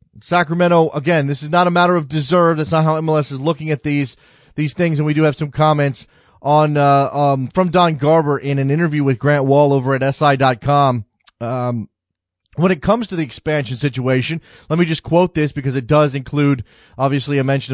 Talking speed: 205 wpm